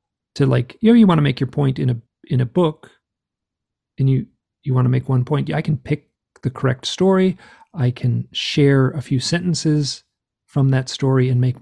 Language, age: English, 40-59